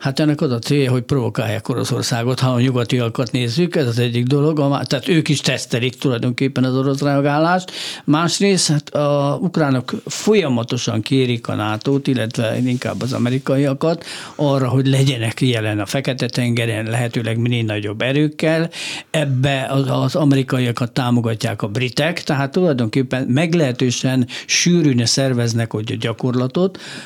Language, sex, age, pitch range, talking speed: Hungarian, male, 60-79, 120-145 Hz, 135 wpm